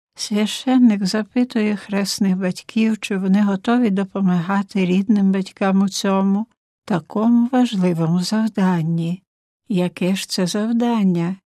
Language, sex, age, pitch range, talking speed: Ukrainian, female, 60-79, 185-230 Hz, 100 wpm